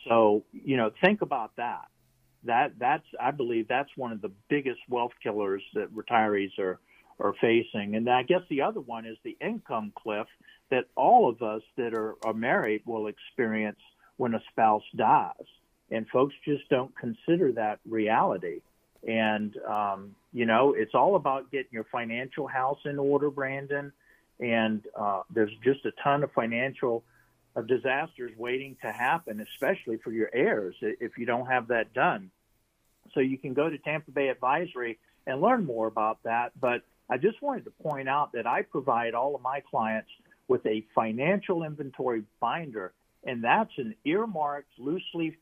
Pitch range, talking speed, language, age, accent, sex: 110-150 Hz, 170 wpm, English, 50-69, American, male